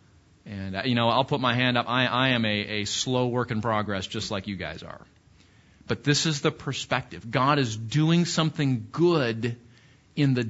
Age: 40-59